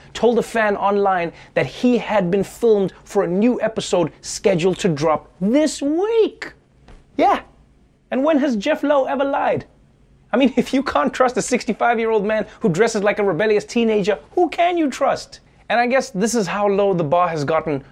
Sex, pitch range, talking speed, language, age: male, 175-260 Hz, 190 wpm, English, 30-49